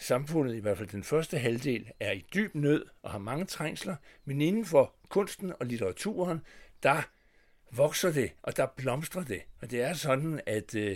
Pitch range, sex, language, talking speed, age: 120-170 Hz, male, English, 180 wpm, 60-79